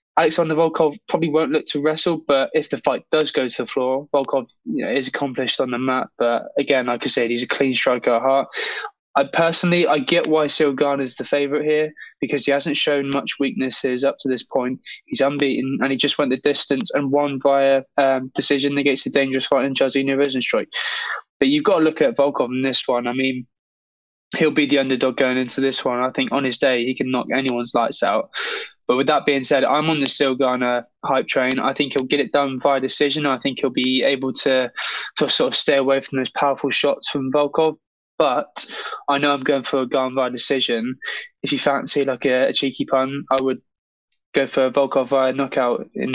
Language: English